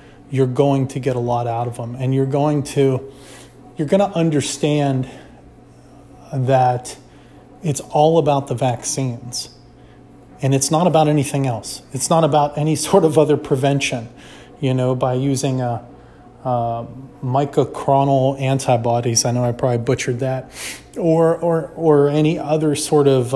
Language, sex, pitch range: English, male, 125-150 Hz